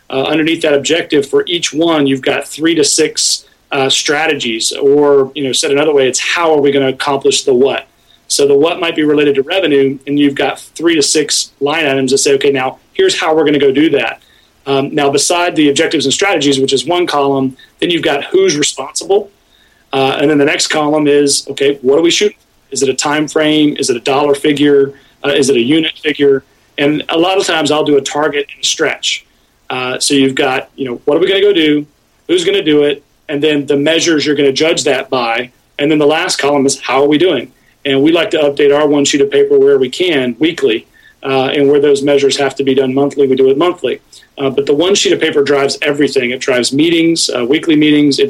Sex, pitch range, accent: male, 140-170 Hz, American